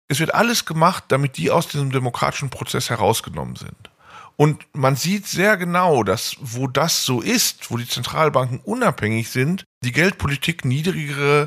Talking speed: 155 wpm